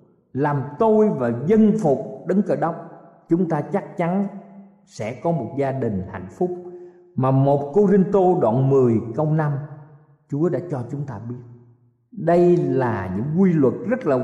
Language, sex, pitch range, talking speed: Vietnamese, male, 135-200 Hz, 170 wpm